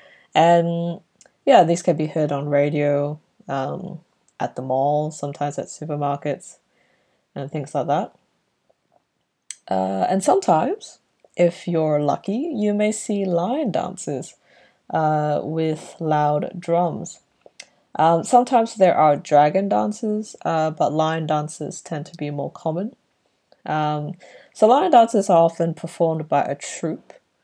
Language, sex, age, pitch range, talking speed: English, female, 20-39, 150-185 Hz, 130 wpm